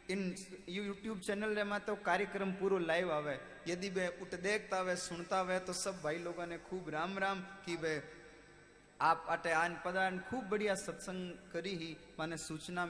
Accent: native